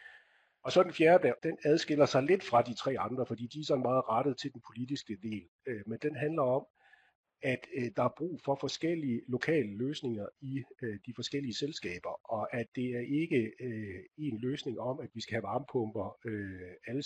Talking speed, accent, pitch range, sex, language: 185 wpm, native, 110-135 Hz, male, Danish